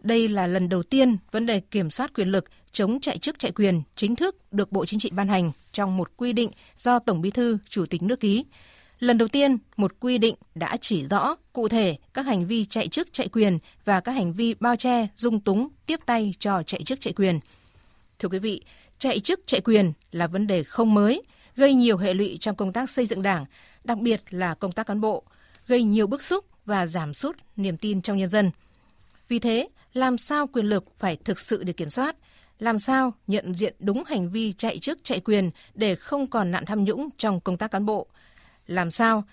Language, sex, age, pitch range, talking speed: Vietnamese, female, 20-39, 190-235 Hz, 225 wpm